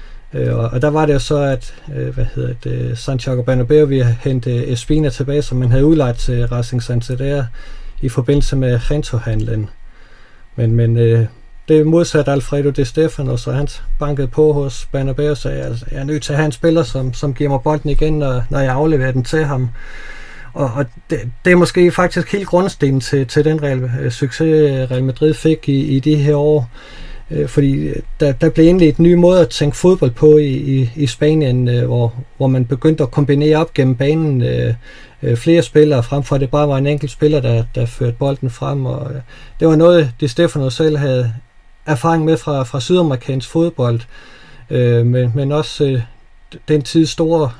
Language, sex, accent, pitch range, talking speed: Danish, male, native, 125-150 Hz, 190 wpm